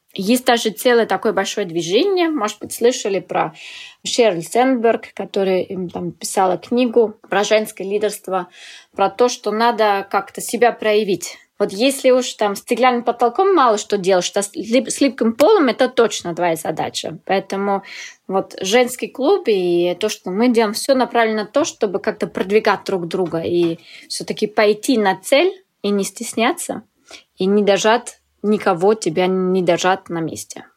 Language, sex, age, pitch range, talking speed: Russian, female, 20-39, 190-240 Hz, 160 wpm